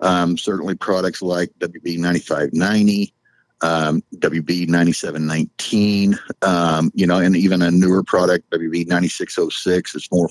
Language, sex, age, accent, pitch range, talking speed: English, male, 50-69, American, 85-95 Hz, 105 wpm